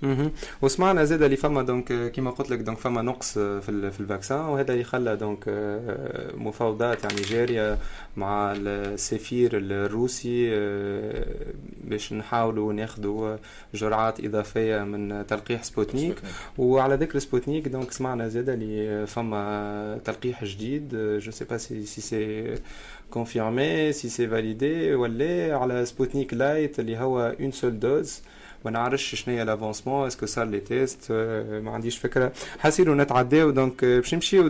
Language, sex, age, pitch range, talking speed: Arabic, male, 20-39, 110-130 Hz, 130 wpm